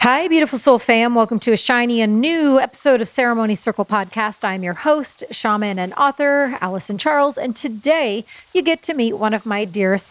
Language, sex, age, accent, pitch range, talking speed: English, female, 40-59, American, 200-255 Hz, 195 wpm